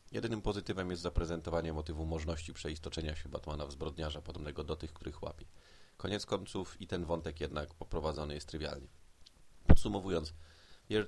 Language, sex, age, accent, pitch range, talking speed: Polish, male, 30-49, native, 75-85 Hz, 145 wpm